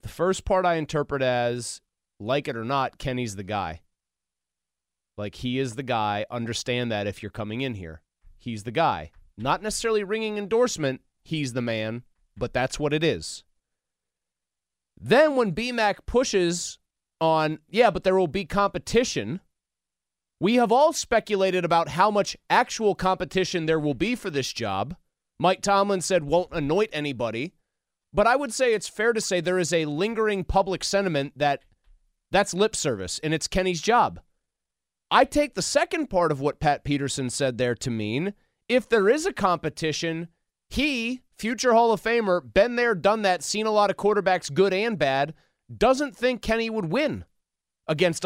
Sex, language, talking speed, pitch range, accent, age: male, English, 170 wpm, 125-205 Hz, American, 30-49